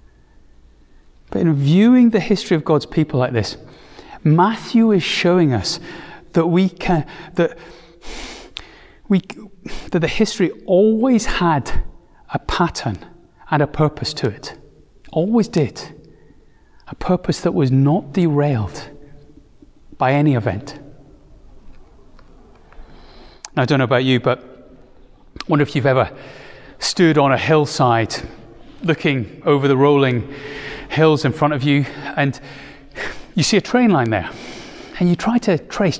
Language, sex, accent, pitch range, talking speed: English, male, British, 130-180 Hz, 130 wpm